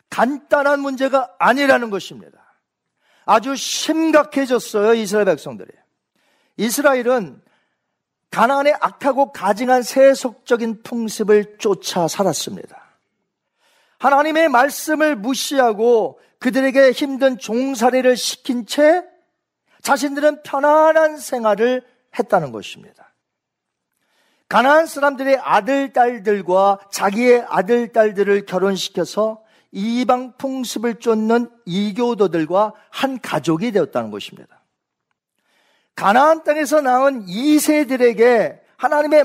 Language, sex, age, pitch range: Korean, male, 40-59, 205-280 Hz